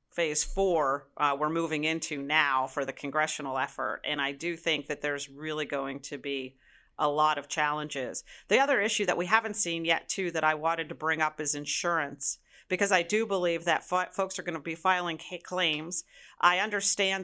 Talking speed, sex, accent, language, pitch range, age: 200 wpm, female, American, English, 150-180 Hz, 40-59